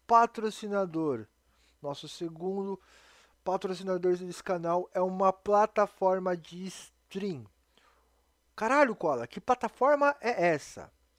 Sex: male